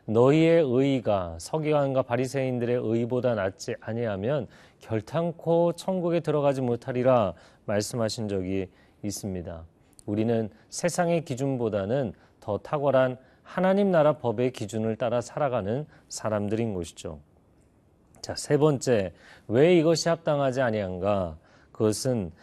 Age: 40-59